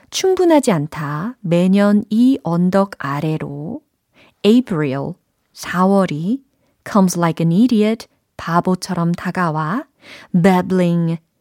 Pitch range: 160-225 Hz